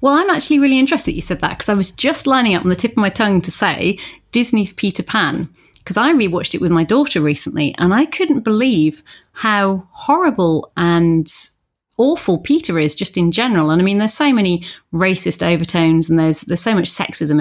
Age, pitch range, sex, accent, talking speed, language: 30-49, 170-220 Hz, female, British, 210 wpm, English